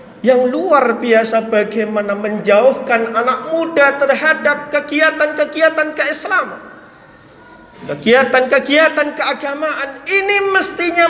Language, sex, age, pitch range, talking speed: Indonesian, male, 40-59, 200-315 Hz, 75 wpm